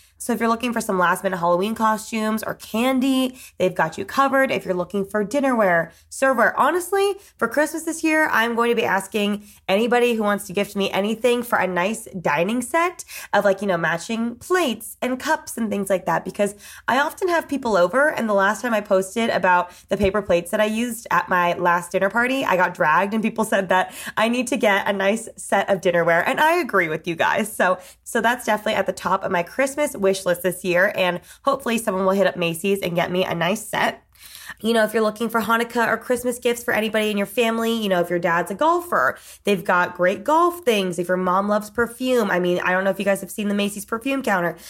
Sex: female